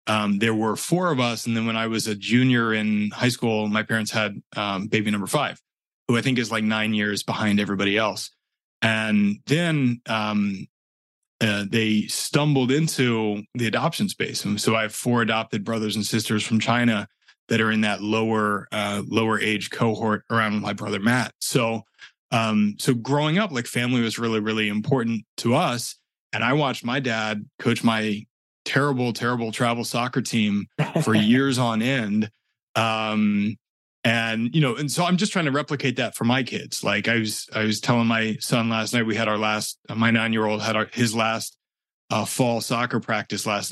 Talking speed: 185 wpm